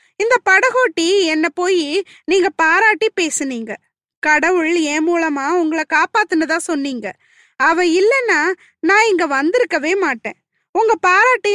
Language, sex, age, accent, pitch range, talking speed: Tamil, female, 20-39, native, 295-405 Hz, 100 wpm